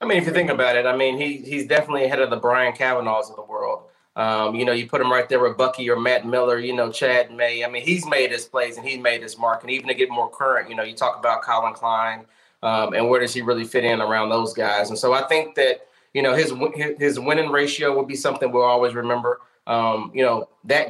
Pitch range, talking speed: 120-145 Hz, 265 wpm